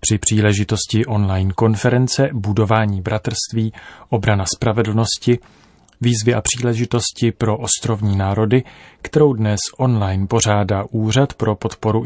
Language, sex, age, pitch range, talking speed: Czech, male, 30-49, 105-120 Hz, 105 wpm